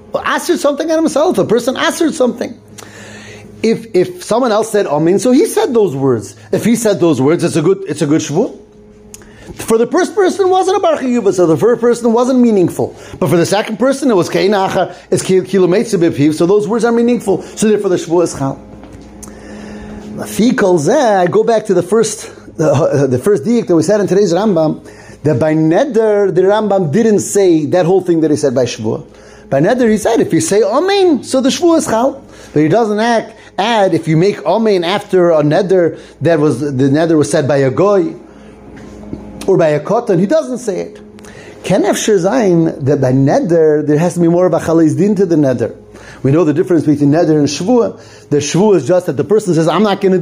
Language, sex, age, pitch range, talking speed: English, male, 30-49, 155-220 Hz, 210 wpm